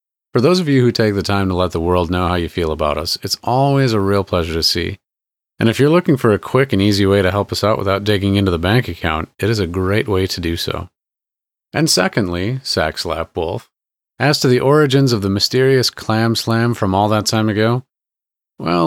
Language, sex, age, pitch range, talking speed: English, male, 30-49, 90-120 Hz, 230 wpm